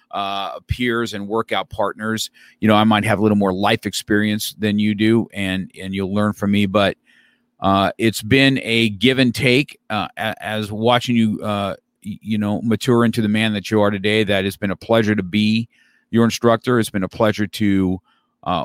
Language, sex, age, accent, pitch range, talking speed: English, male, 50-69, American, 100-115 Hz, 200 wpm